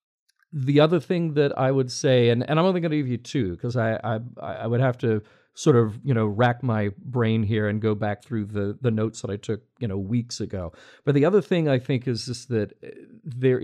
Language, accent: English, American